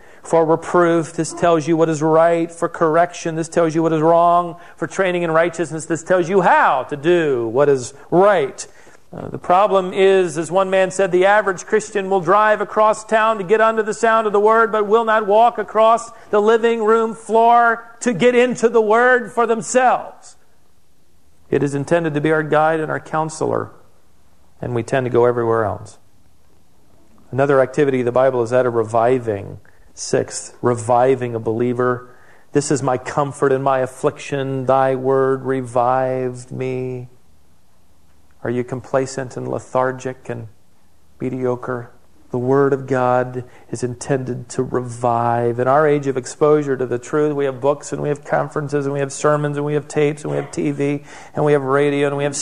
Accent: American